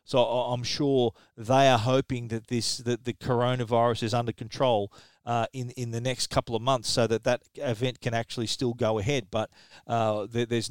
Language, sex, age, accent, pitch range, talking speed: English, male, 40-59, Australian, 115-135 Hz, 190 wpm